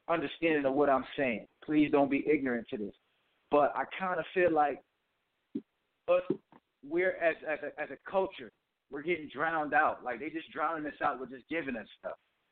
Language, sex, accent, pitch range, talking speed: English, male, American, 150-185 Hz, 190 wpm